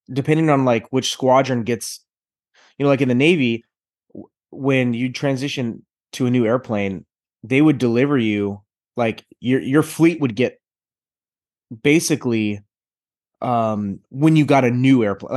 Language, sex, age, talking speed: English, male, 20-39, 145 wpm